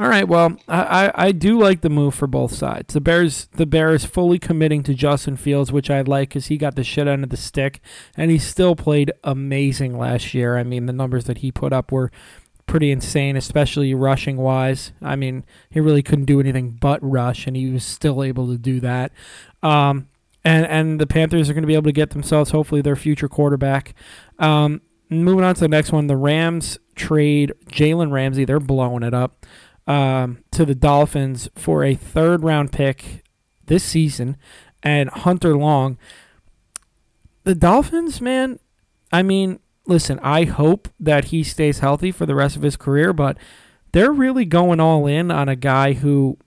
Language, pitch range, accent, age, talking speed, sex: English, 135-165 Hz, American, 20-39, 185 wpm, male